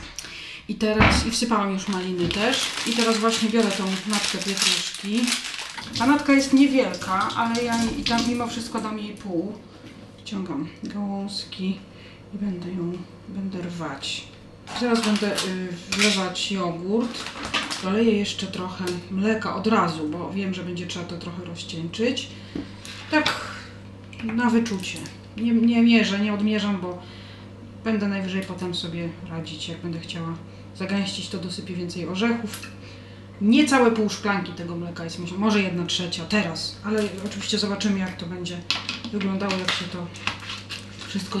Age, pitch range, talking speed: 40-59, 175-215 Hz, 140 wpm